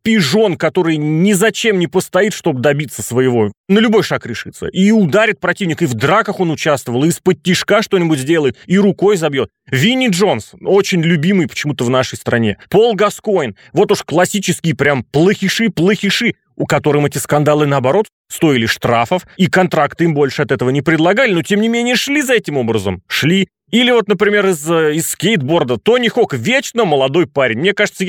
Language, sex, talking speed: Russian, male, 175 wpm